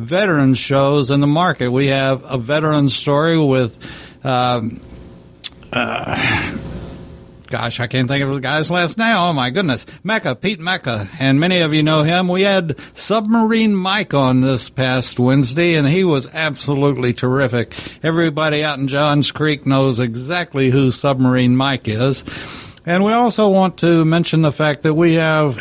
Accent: American